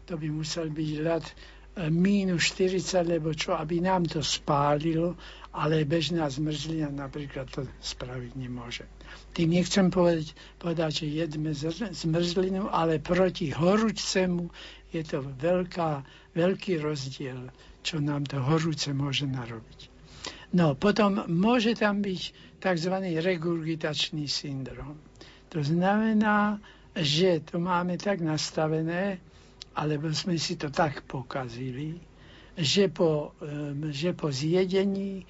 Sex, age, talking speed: male, 60-79, 115 wpm